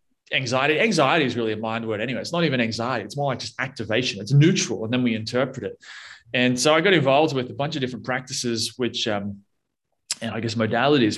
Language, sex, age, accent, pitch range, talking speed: English, male, 20-39, Australian, 115-140 Hz, 220 wpm